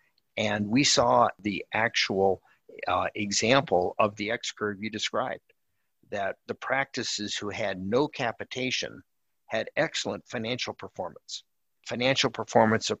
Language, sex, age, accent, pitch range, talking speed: English, male, 50-69, American, 100-120 Hz, 125 wpm